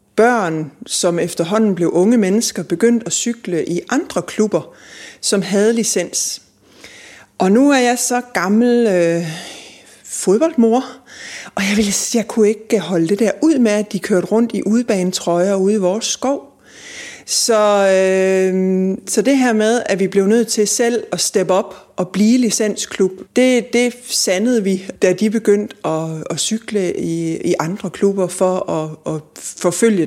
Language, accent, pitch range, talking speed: Danish, native, 170-225 Hz, 160 wpm